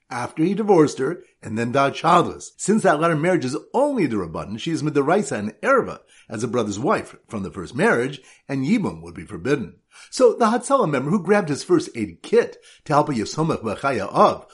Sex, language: male, English